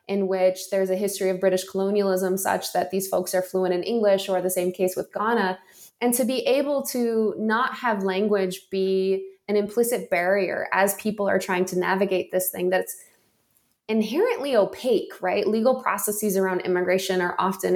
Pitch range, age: 185-215 Hz, 20-39